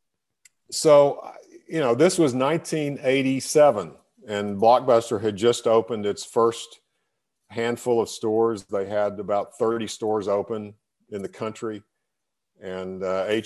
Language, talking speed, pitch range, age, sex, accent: English, 120 wpm, 95-110 Hz, 50-69, male, American